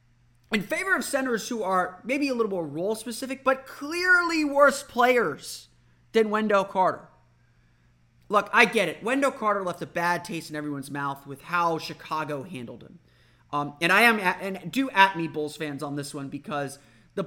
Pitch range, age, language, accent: 150-220 Hz, 30-49, English, American